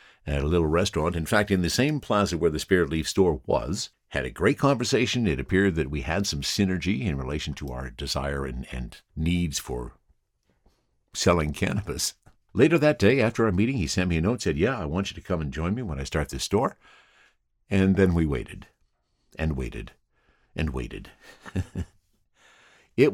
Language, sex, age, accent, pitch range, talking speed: English, male, 60-79, American, 75-105 Hz, 190 wpm